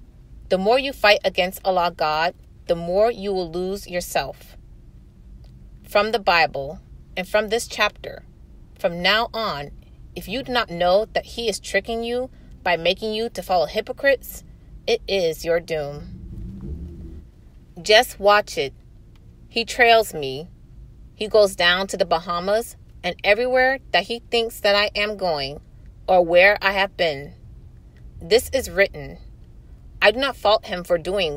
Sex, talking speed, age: female, 150 wpm, 30-49